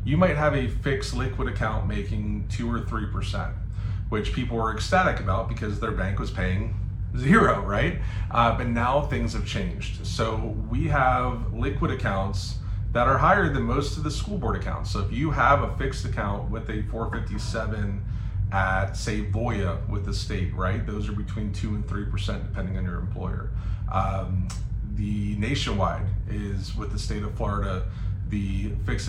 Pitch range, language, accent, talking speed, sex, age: 100-115 Hz, English, American, 170 wpm, male, 30-49